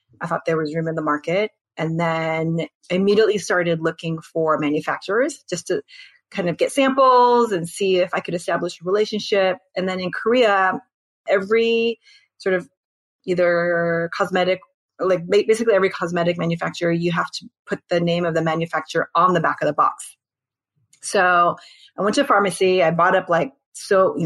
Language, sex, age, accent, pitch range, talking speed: English, female, 30-49, American, 160-200 Hz, 175 wpm